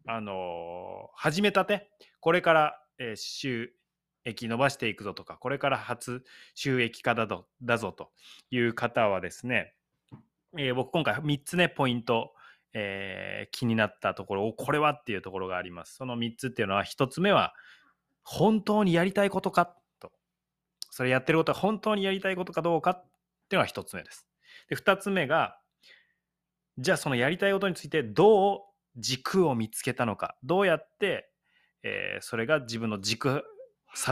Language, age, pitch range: Japanese, 20-39, 115-180 Hz